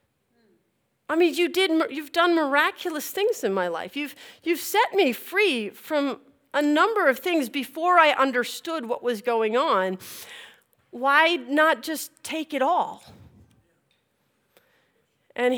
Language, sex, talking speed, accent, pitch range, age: English, female, 135 wpm, American, 220-300 Hz, 50-69